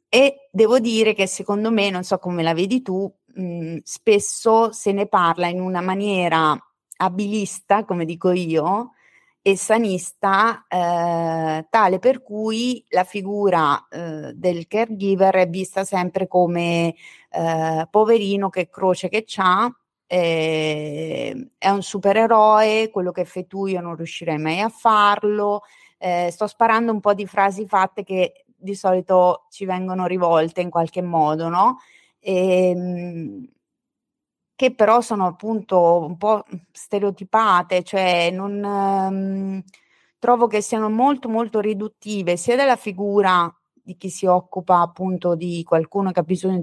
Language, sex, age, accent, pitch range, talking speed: Italian, female, 30-49, native, 175-215 Hz, 140 wpm